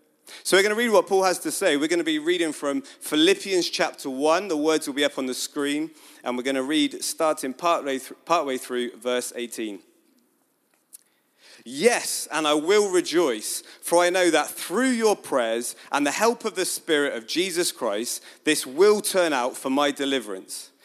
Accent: British